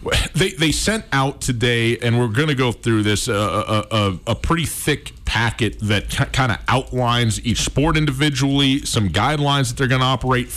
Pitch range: 100-130 Hz